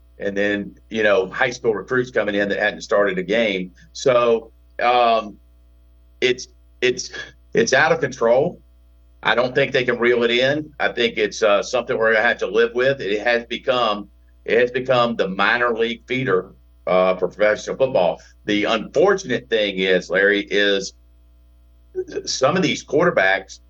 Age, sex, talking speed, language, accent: 50-69, male, 165 wpm, English, American